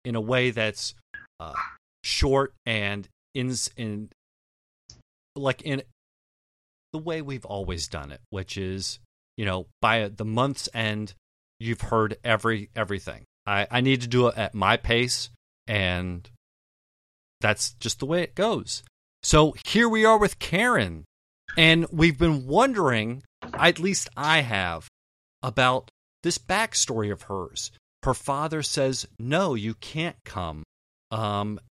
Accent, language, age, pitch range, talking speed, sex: American, English, 40-59, 100-135 Hz, 135 wpm, male